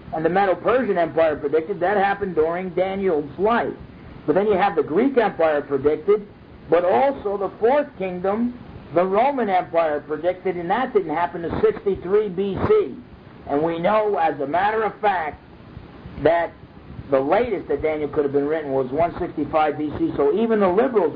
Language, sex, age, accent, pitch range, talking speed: English, male, 50-69, American, 150-200 Hz, 165 wpm